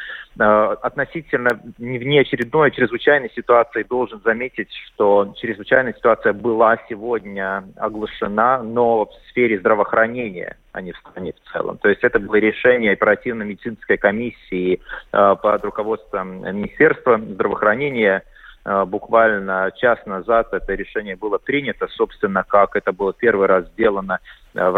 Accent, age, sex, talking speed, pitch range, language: native, 30-49, male, 115 wpm, 100-125 Hz, Russian